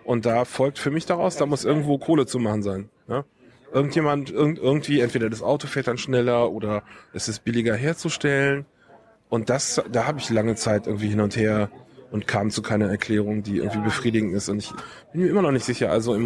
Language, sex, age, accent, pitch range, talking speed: German, male, 20-39, German, 110-140 Hz, 215 wpm